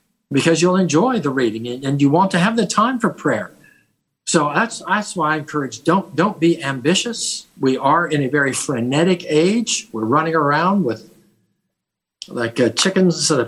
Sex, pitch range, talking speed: male, 125-170 Hz, 180 wpm